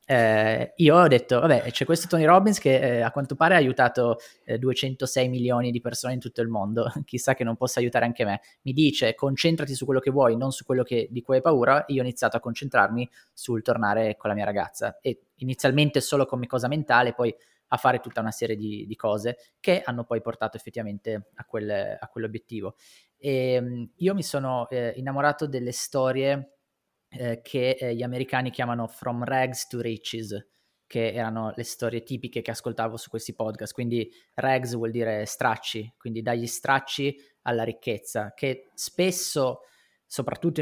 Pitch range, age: 115-130 Hz, 20-39